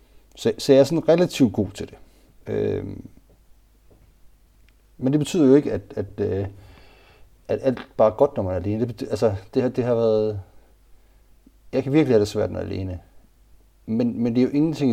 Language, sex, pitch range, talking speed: Danish, male, 95-125 Hz, 185 wpm